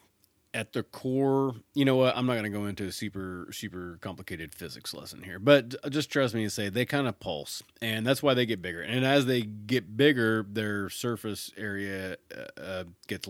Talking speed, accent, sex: 205 wpm, American, male